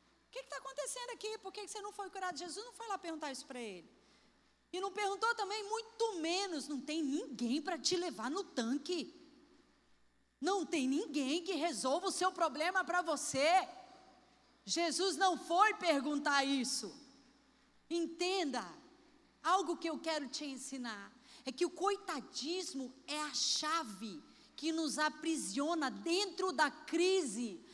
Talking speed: 150 wpm